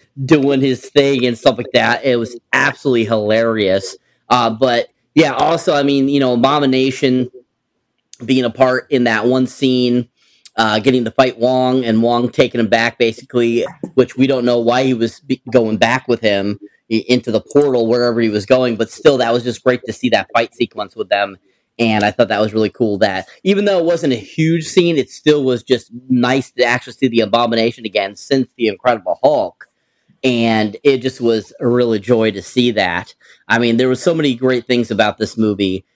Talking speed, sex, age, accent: 200 wpm, male, 30-49, American